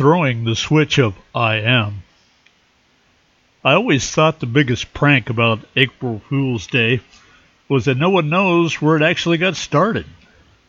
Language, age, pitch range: English, 50-69, 115-145 Hz